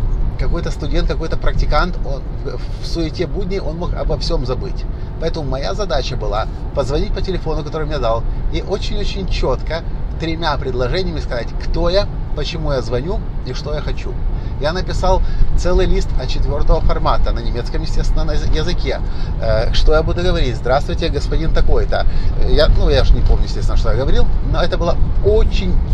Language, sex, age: Russian, male, 30-49